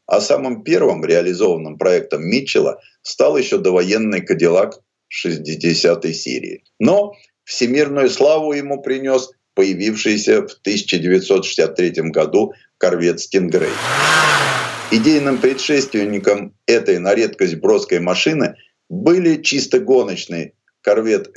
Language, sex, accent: Russian, male, native